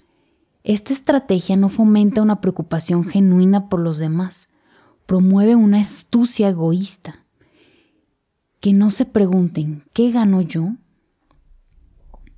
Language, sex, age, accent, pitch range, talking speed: Spanish, female, 20-39, Mexican, 175-215 Hz, 100 wpm